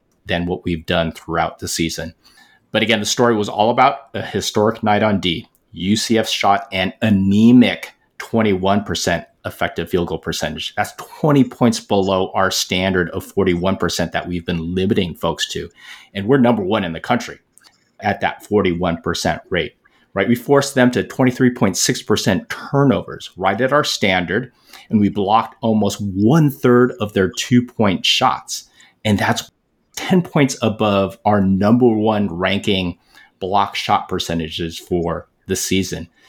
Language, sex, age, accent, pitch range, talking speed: English, male, 30-49, American, 95-115 Hz, 155 wpm